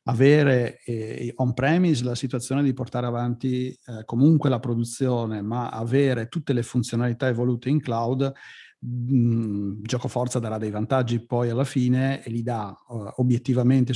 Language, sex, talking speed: Italian, male, 130 wpm